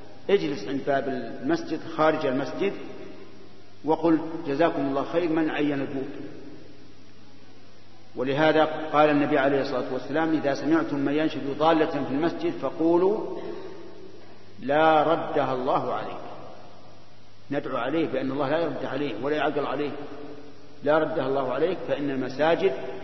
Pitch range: 135-155 Hz